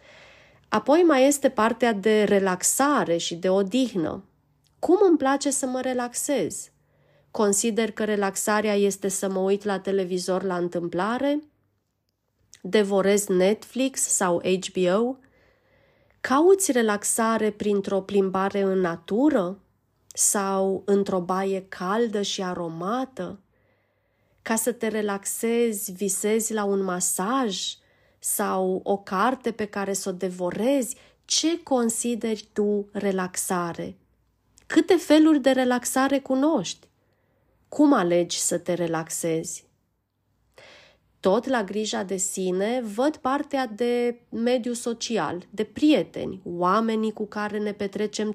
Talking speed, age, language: 110 wpm, 30-49, Romanian